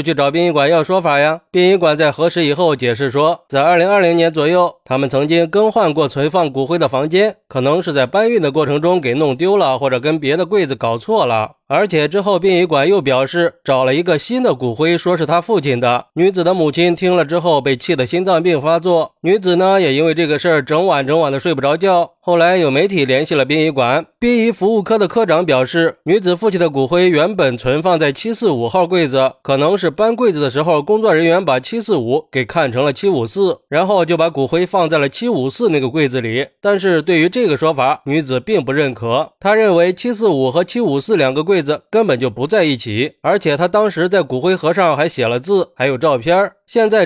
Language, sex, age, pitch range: Chinese, male, 20-39, 140-185 Hz